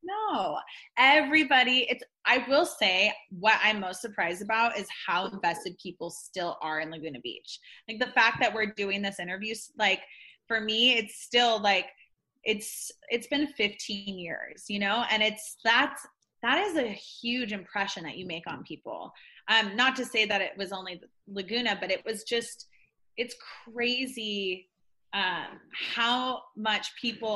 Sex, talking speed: female, 160 wpm